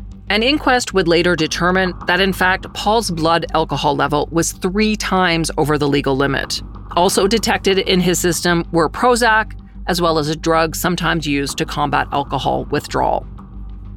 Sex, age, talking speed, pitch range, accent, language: female, 40-59, 160 wpm, 155-220 Hz, American, English